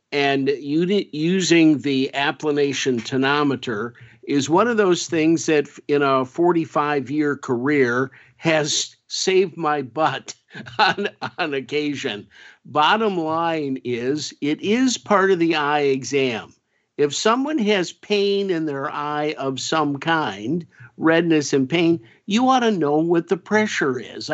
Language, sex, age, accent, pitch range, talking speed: English, male, 50-69, American, 135-175 Hz, 130 wpm